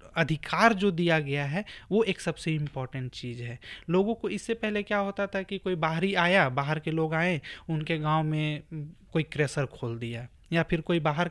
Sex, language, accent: male, English, Indian